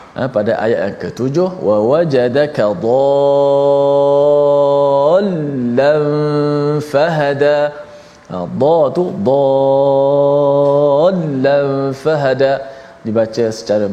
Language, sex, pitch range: Malayalam, male, 120-160 Hz